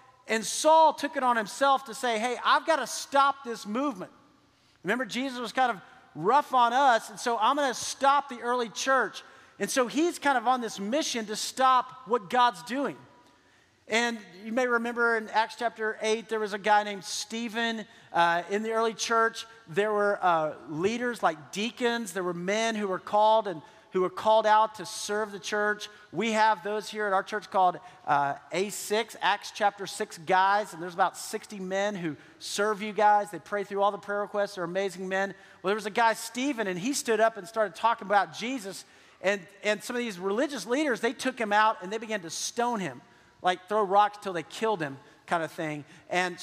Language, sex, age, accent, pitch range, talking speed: English, male, 40-59, American, 195-235 Hz, 210 wpm